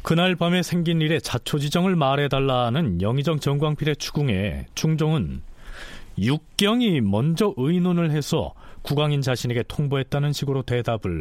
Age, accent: 40-59, native